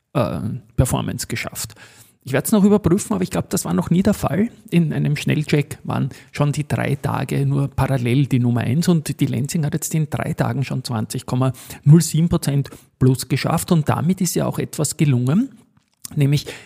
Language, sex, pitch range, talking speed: German, male, 130-160 Hz, 180 wpm